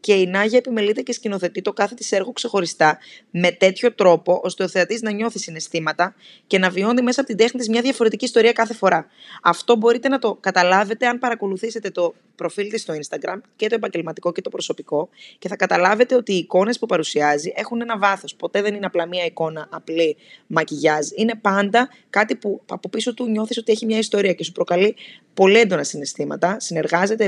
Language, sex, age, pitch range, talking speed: Greek, female, 20-39, 175-230 Hz, 195 wpm